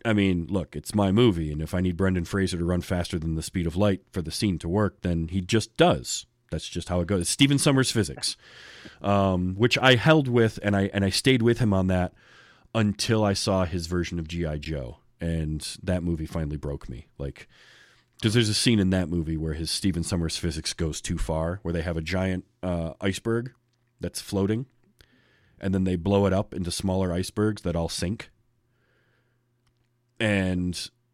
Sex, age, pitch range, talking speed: male, 30-49, 90-120 Hz, 200 wpm